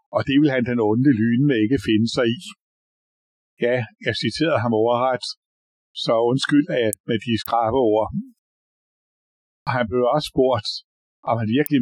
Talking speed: 155 wpm